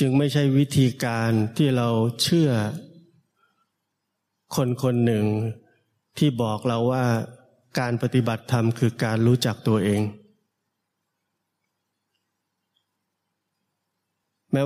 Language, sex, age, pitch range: Thai, male, 20-39, 115-145 Hz